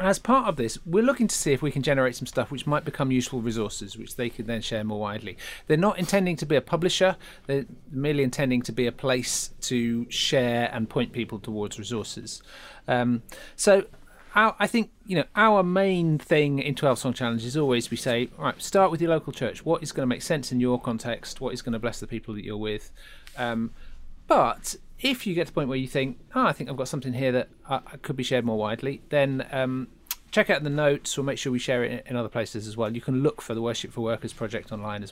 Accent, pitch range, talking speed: British, 115-155 Hz, 250 wpm